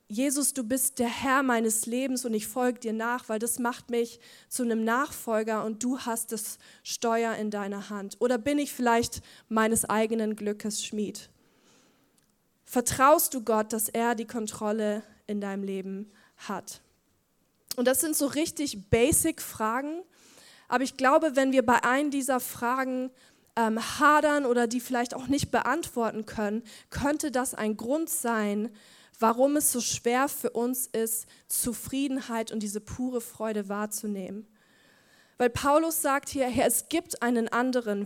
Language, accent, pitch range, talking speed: German, German, 220-260 Hz, 155 wpm